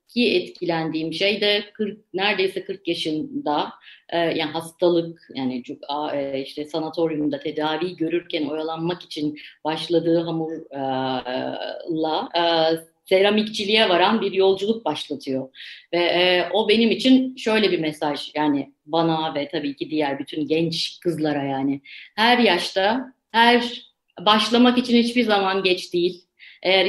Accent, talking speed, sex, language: native, 125 wpm, female, Turkish